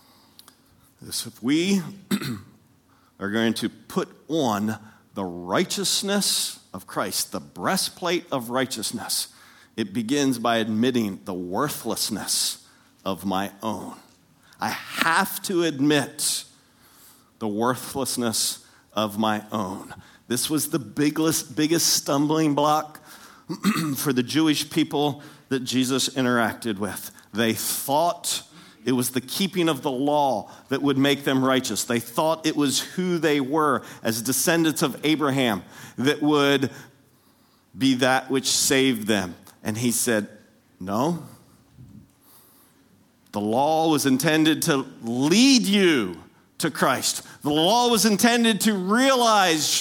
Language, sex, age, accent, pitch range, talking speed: English, male, 50-69, American, 120-165 Hz, 120 wpm